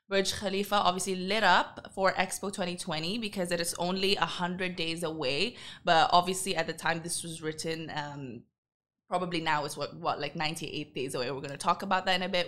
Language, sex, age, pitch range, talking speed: Arabic, female, 20-39, 165-205 Hz, 200 wpm